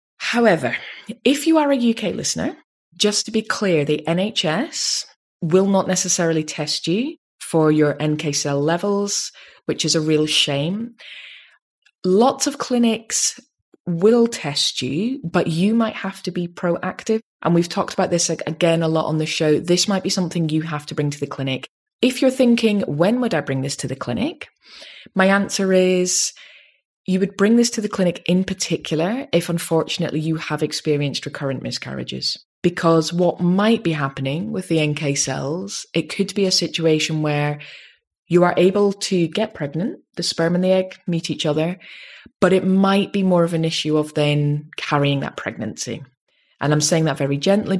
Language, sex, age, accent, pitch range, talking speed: English, female, 20-39, British, 150-195 Hz, 175 wpm